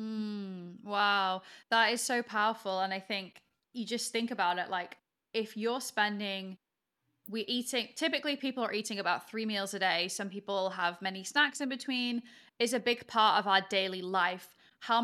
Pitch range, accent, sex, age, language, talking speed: 190-225 Hz, British, female, 20-39, English, 180 wpm